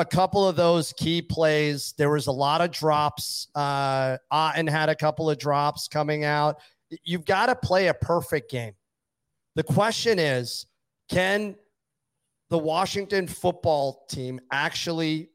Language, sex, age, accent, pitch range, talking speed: English, male, 40-59, American, 135-170 Hz, 145 wpm